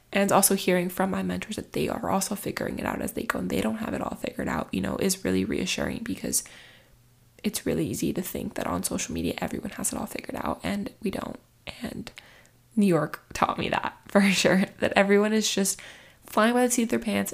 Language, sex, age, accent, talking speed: English, female, 10-29, American, 230 wpm